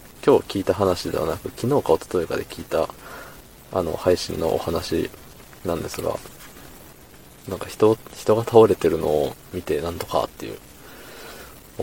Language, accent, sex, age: Japanese, native, male, 20-39